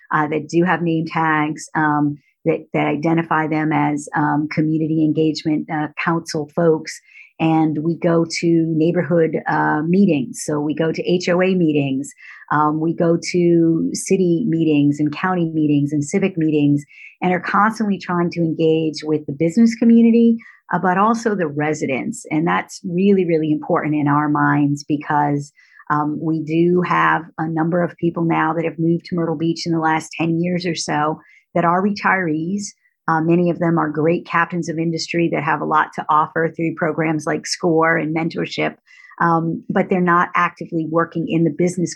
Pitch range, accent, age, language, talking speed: 155-170 Hz, American, 40-59, English, 175 wpm